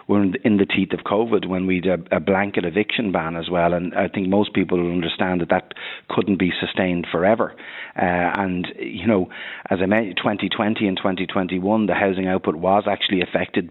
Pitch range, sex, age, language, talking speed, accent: 90-100 Hz, male, 30-49, English, 195 wpm, Irish